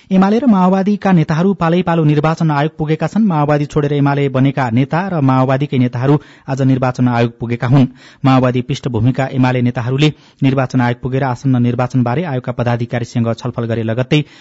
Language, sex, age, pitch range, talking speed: English, male, 30-49, 120-145 Hz, 155 wpm